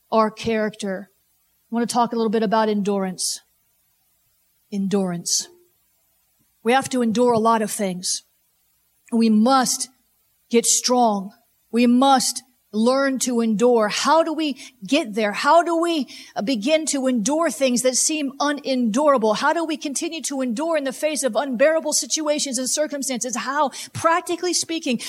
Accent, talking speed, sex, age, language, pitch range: American, 145 wpm, female, 40-59, English, 235-300 Hz